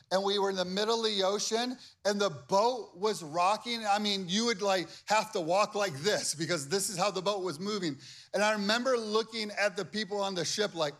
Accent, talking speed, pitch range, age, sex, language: American, 235 wpm, 135-210 Hz, 30-49, male, English